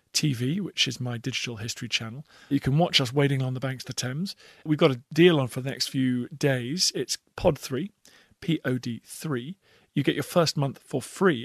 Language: English